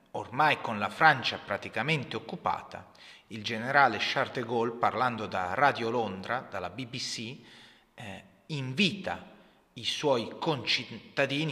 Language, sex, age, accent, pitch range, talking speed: Italian, male, 30-49, native, 110-160 Hz, 115 wpm